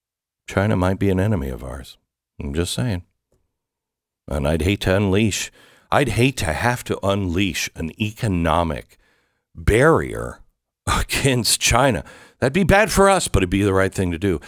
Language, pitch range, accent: English, 85-120 Hz, American